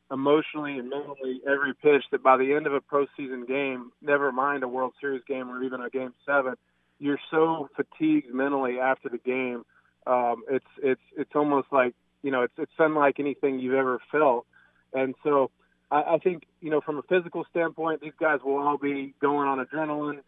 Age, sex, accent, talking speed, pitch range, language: 30-49, male, American, 190 wpm, 125-145 Hz, English